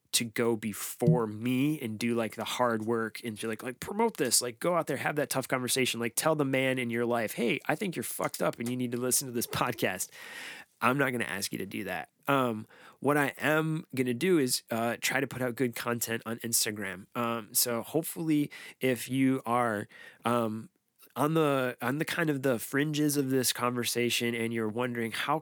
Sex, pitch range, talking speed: male, 115-130 Hz, 220 wpm